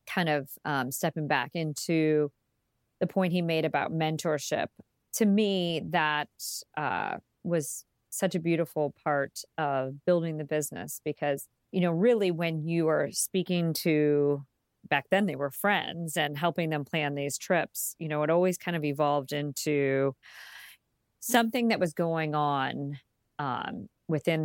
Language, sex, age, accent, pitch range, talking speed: English, female, 40-59, American, 140-170 Hz, 145 wpm